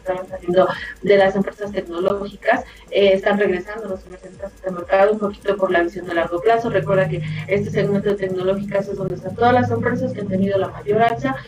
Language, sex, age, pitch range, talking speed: Spanish, female, 30-49, 190-220 Hz, 210 wpm